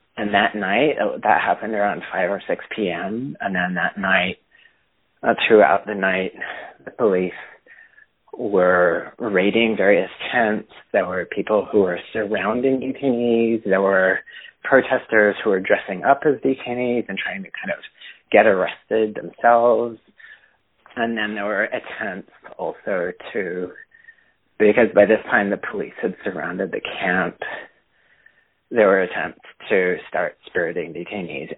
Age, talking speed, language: 30-49, 140 wpm, English